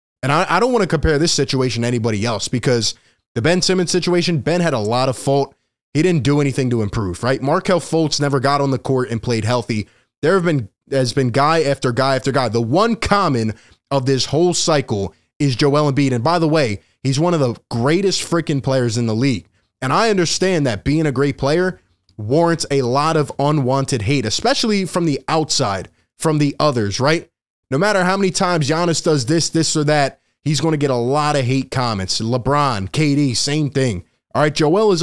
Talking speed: 210 wpm